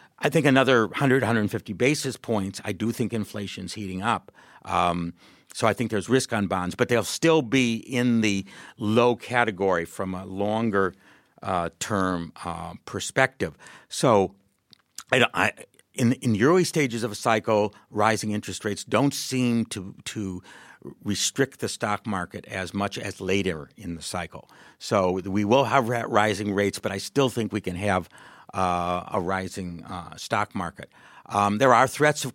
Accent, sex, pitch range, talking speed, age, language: American, male, 100-120 Hz, 160 wpm, 50-69, English